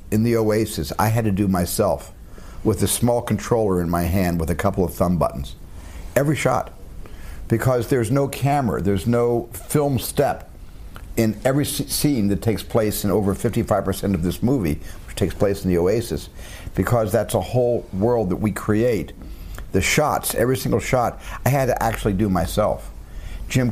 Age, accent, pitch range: 60-79, American, 90-115 Hz